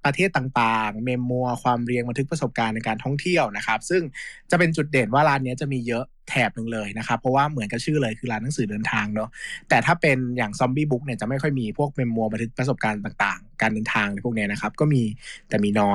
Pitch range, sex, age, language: 115-150 Hz, male, 20-39, Thai